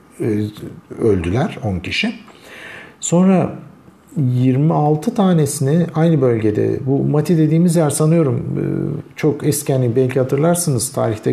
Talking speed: 100 wpm